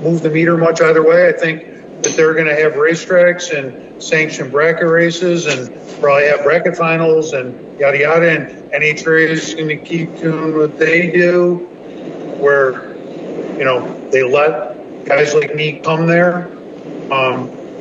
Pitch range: 145-180 Hz